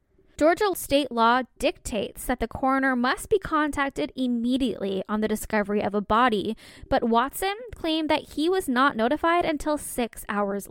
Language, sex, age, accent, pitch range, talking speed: English, female, 10-29, American, 225-295 Hz, 155 wpm